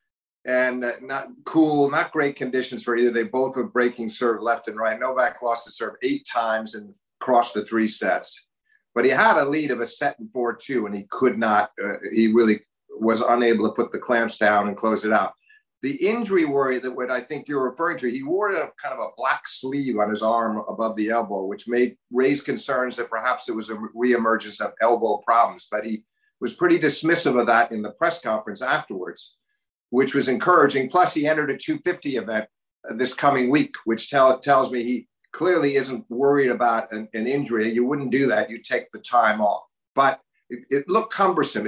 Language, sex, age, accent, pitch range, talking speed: English, male, 50-69, American, 115-140 Hz, 205 wpm